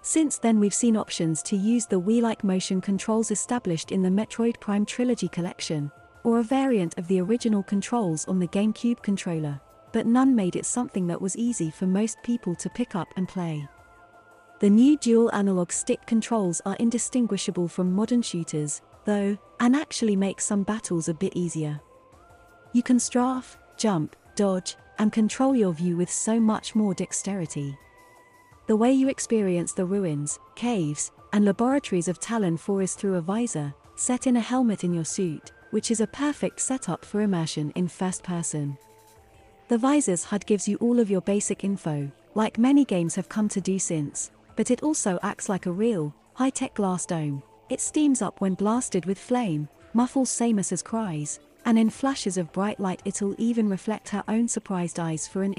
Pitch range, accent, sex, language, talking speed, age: 175-230 Hz, British, female, English, 180 wpm, 30-49